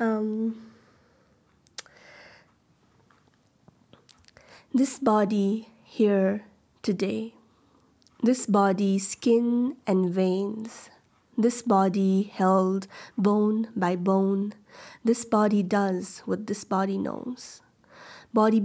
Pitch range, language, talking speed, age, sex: 200-225 Hz, English, 75 wpm, 20-39, female